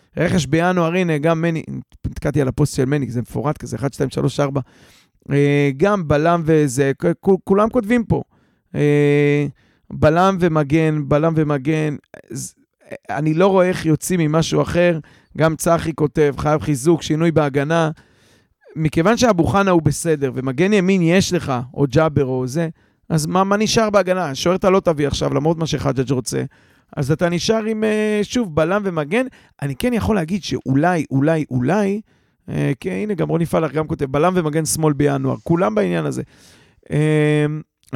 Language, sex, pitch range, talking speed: Hebrew, male, 145-185 Hz, 155 wpm